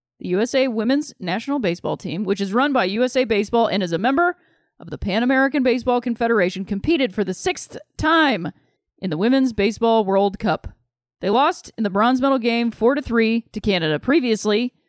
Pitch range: 195-250 Hz